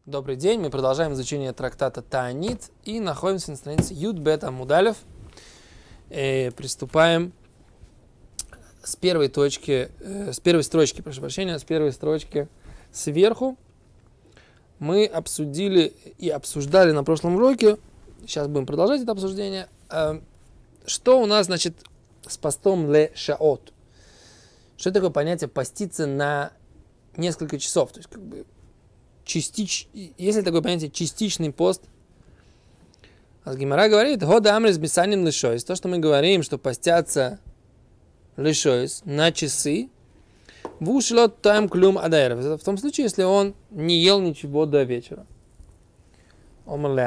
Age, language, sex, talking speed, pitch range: 20-39, Russian, male, 110 wpm, 135-190 Hz